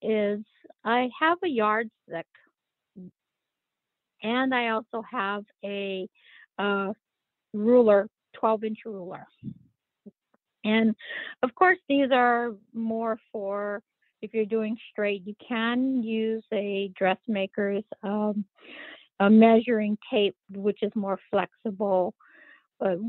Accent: American